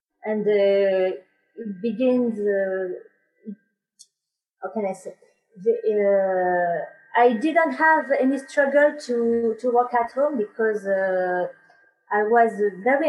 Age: 30-49